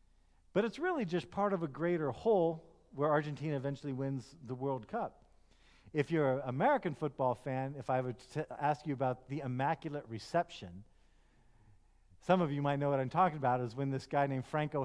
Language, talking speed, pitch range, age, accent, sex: English, 195 wpm, 130-175 Hz, 50-69, American, male